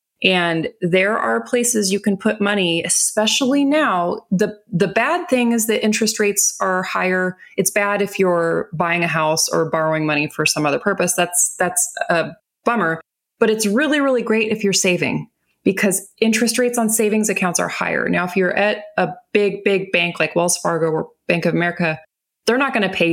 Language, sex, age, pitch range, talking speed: English, female, 20-39, 170-215 Hz, 190 wpm